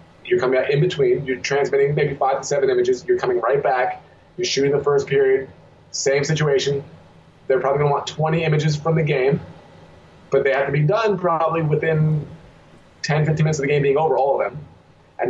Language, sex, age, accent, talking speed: English, male, 30-49, American, 205 wpm